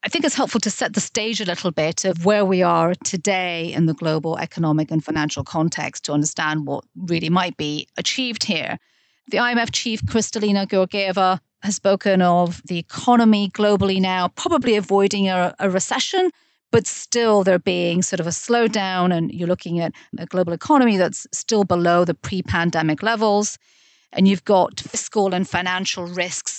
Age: 40-59